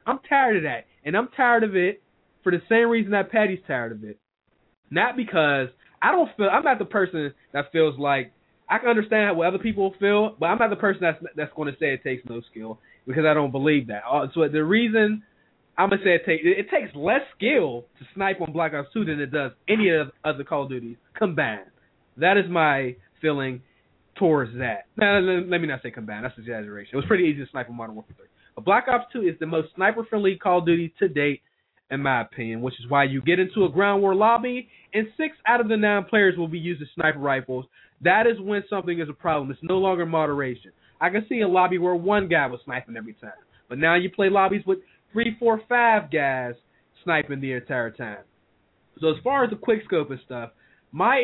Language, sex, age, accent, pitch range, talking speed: English, male, 20-39, American, 140-210 Hz, 230 wpm